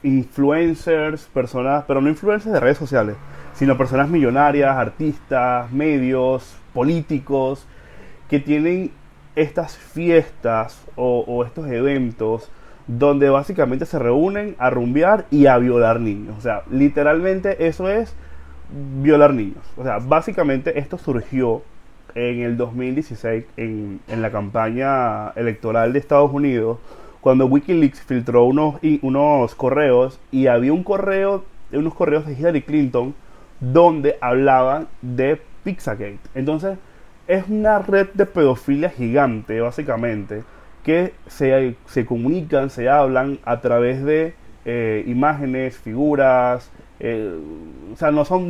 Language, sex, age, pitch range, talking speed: Spanish, male, 30-49, 120-155 Hz, 120 wpm